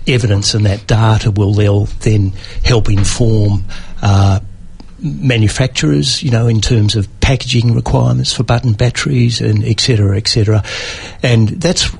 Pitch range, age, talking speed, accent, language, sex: 105-120 Hz, 60-79, 140 wpm, Australian, English, male